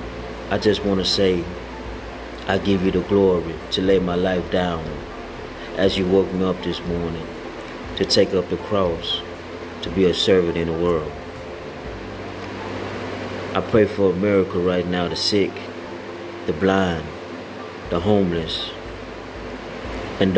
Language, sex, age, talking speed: English, male, 30-49, 140 wpm